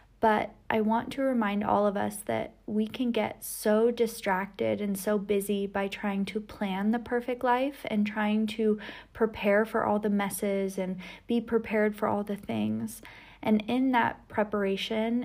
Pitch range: 185-220 Hz